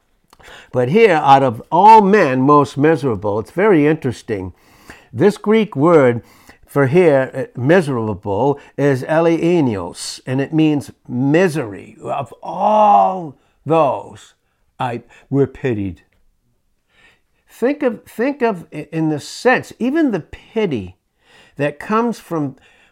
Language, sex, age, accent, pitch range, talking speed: English, male, 60-79, American, 115-165 Hz, 110 wpm